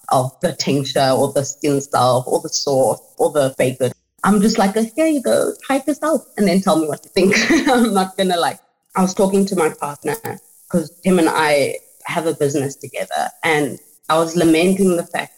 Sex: female